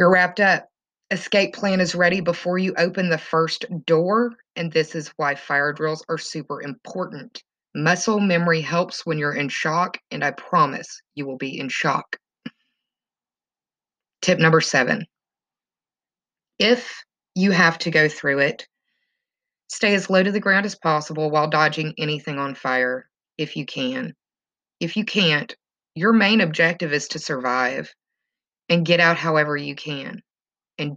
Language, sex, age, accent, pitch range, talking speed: English, female, 20-39, American, 145-185 Hz, 155 wpm